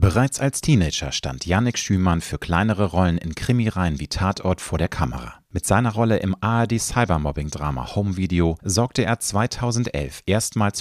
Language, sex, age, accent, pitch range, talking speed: German, male, 40-59, German, 85-110 Hz, 150 wpm